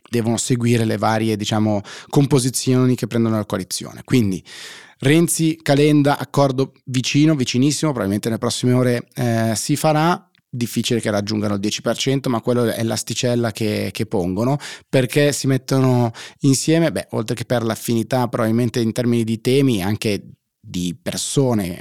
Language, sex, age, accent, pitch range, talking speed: Italian, male, 30-49, native, 110-135 Hz, 145 wpm